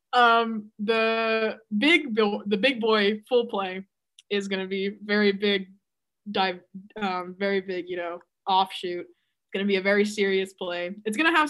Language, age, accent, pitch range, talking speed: English, 20-39, American, 190-210 Hz, 170 wpm